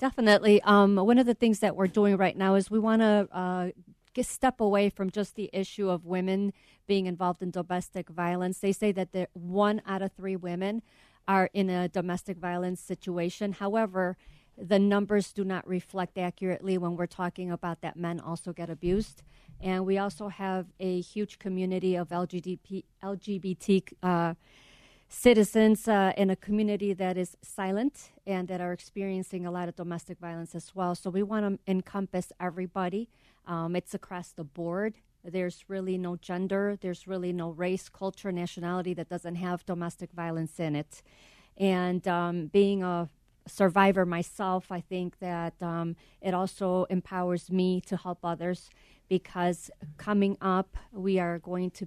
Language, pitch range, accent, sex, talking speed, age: English, 175-195 Hz, American, female, 165 wpm, 40-59